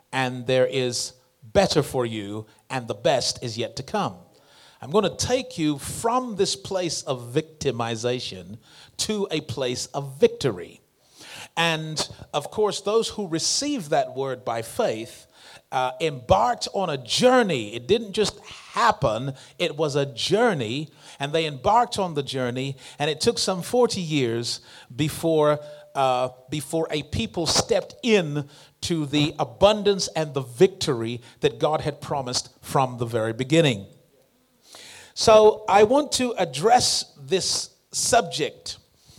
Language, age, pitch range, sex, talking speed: English, 40-59, 130-205 Hz, male, 140 wpm